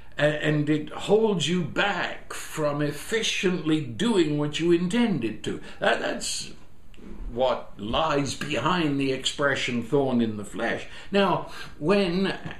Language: English